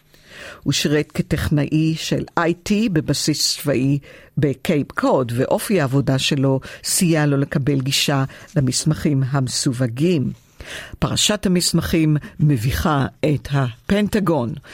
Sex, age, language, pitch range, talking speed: female, 50-69, Hebrew, 145-180 Hz, 95 wpm